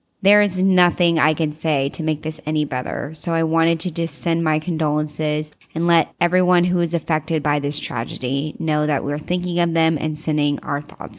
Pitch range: 160-205 Hz